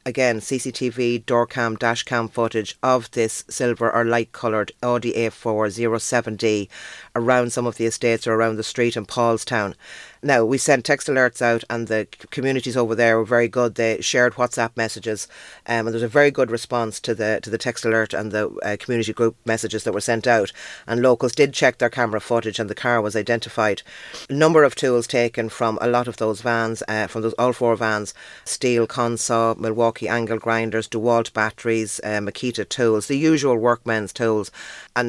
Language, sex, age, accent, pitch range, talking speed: English, female, 30-49, Irish, 115-125 Hz, 190 wpm